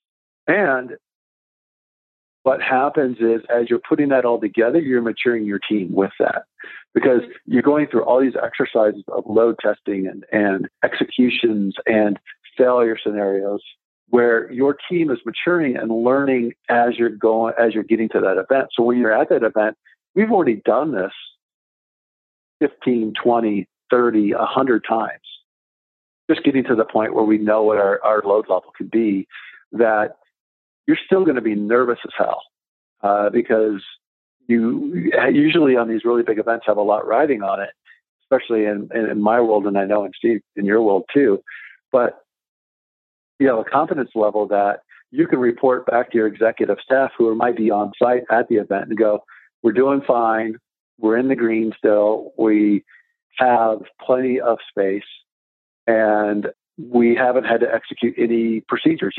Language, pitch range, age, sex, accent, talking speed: English, 105-120 Hz, 50-69, male, American, 170 wpm